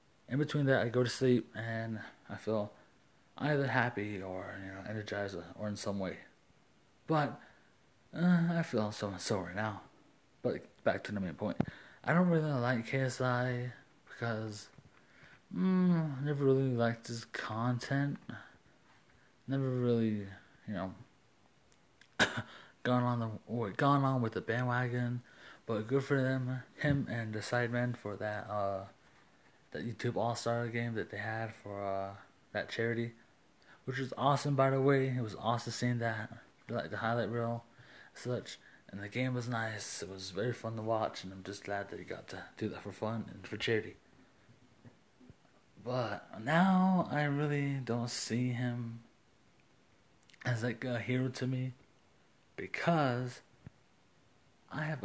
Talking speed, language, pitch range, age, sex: 150 wpm, English, 110-130 Hz, 30-49, male